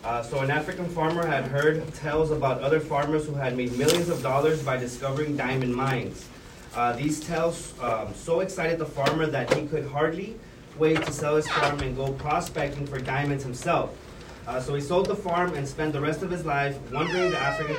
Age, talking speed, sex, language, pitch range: 30-49, 200 wpm, male, English, 130-160 Hz